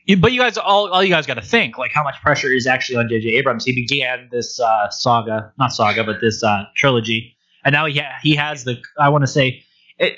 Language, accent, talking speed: English, American, 250 wpm